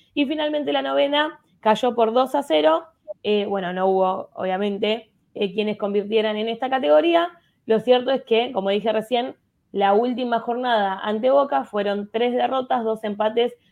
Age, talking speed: 20-39, 160 wpm